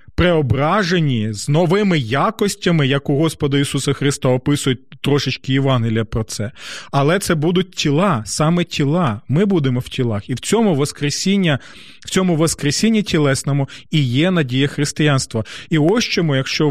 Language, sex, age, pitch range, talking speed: Ukrainian, male, 30-49, 135-180 Hz, 145 wpm